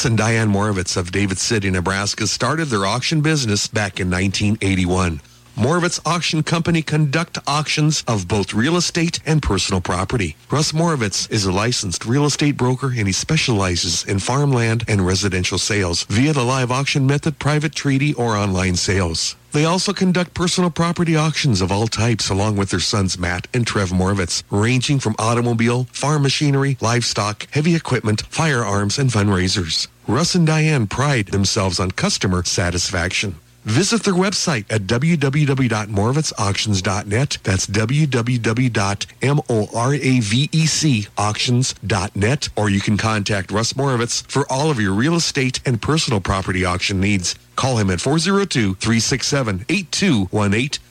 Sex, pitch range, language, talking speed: male, 100-145 Hz, English, 140 wpm